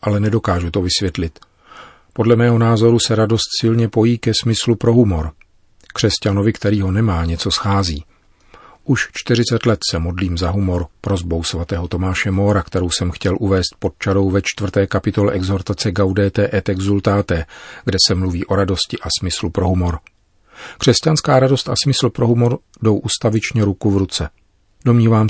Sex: male